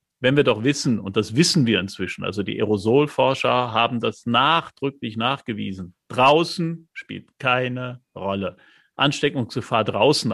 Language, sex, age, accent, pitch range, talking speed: German, male, 50-69, German, 110-130 Hz, 130 wpm